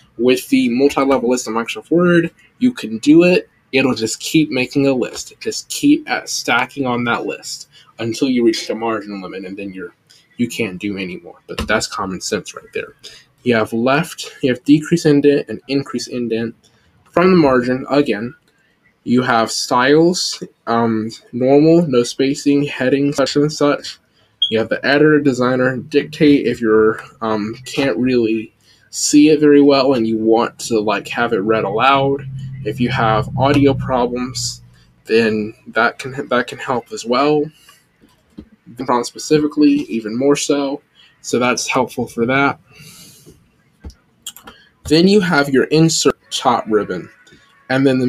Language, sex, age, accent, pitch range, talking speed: English, male, 20-39, American, 115-145 Hz, 160 wpm